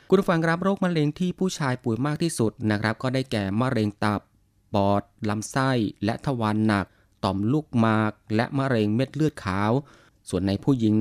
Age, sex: 20-39, male